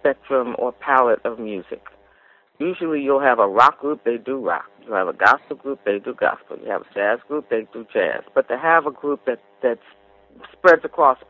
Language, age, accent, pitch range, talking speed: English, 40-59, American, 120-135 Hz, 205 wpm